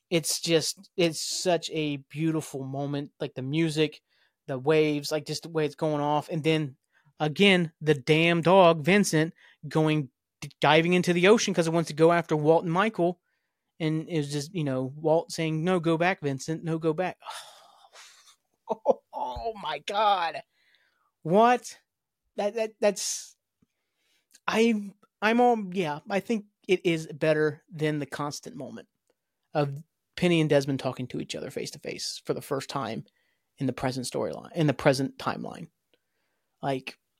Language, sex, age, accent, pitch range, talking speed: English, male, 30-49, American, 150-185 Hz, 160 wpm